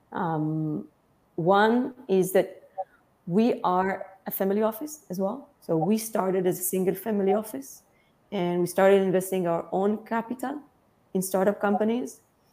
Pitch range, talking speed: 170-200 Hz, 140 wpm